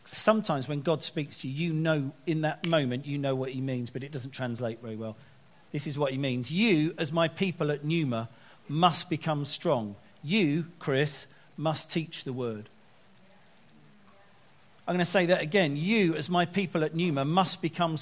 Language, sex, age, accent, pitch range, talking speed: English, male, 40-59, British, 135-170 Hz, 185 wpm